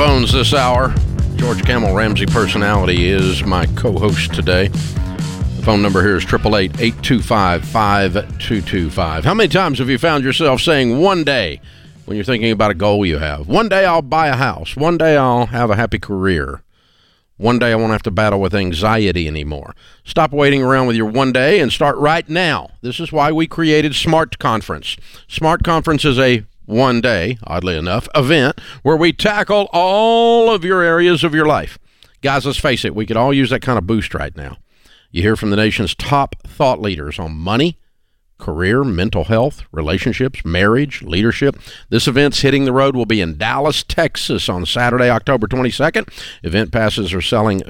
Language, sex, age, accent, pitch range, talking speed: English, male, 50-69, American, 95-140 Hz, 180 wpm